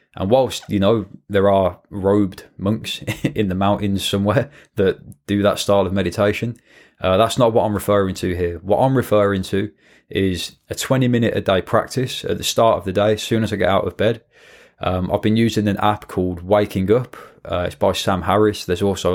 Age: 20-39